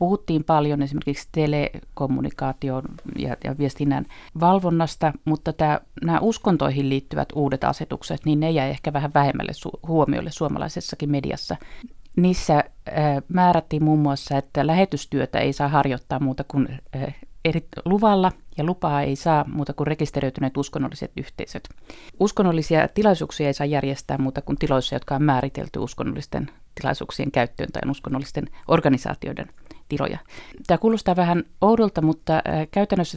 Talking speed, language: 120 wpm, Finnish